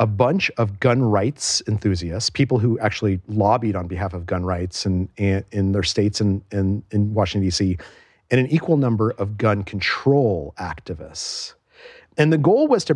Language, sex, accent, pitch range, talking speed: English, male, American, 100-135 Hz, 170 wpm